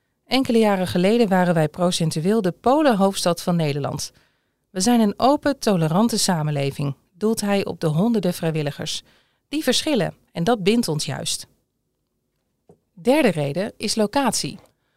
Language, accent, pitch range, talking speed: Dutch, Dutch, 165-235 Hz, 130 wpm